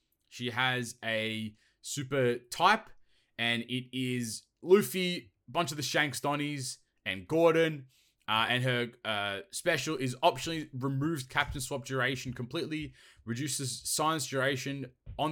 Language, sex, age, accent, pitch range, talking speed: English, male, 20-39, Australian, 120-145 Hz, 125 wpm